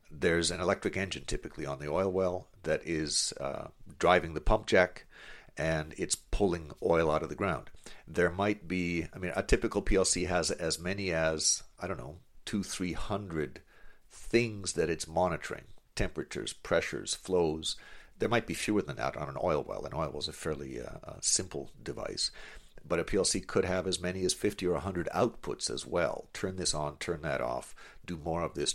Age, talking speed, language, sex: 50-69, 195 wpm, English, male